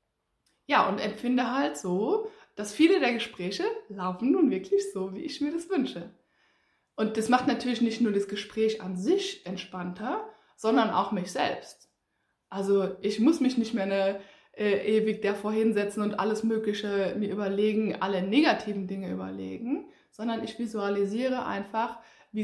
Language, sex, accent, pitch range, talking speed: German, female, German, 205-270 Hz, 150 wpm